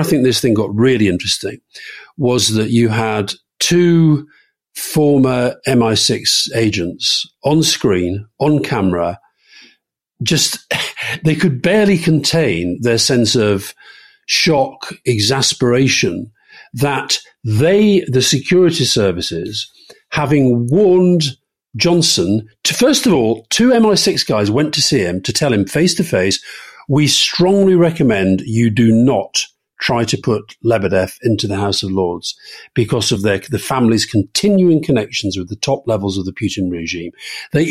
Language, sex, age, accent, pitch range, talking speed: English, male, 50-69, British, 105-165 Hz, 135 wpm